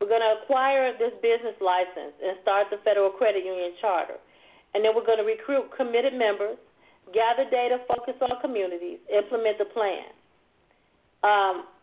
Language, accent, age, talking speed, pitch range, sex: English, American, 40-59, 155 wpm, 205-255 Hz, female